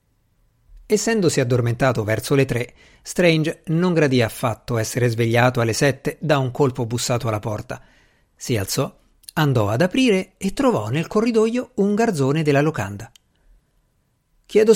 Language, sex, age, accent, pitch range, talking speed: Italian, male, 50-69, native, 125-180 Hz, 135 wpm